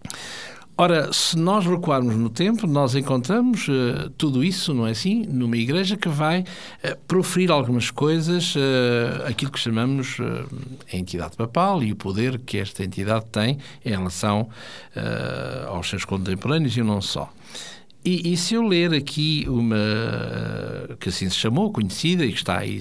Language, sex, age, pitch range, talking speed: Portuguese, male, 60-79, 110-170 Hz, 150 wpm